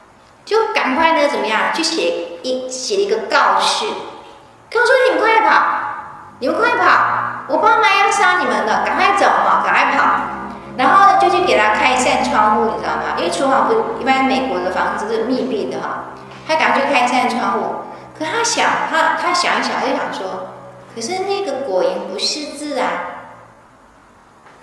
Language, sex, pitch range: Chinese, female, 255-395 Hz